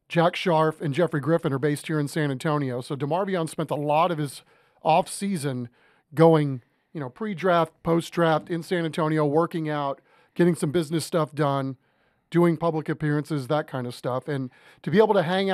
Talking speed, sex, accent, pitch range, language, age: 180 wpm, male, American, 145-175 Hz, English, 40-59